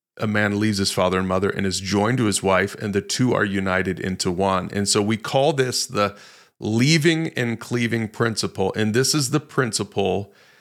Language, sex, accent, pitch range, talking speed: English, male, American, 105-125 Hz, 200 wpm